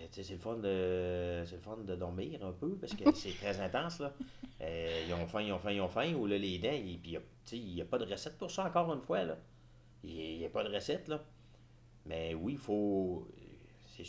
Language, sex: French, male